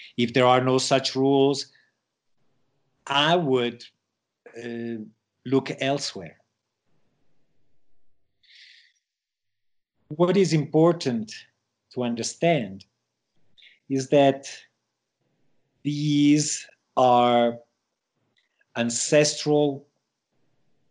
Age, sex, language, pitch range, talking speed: 50-69, male, English, 115-140 Hz, 60 wpm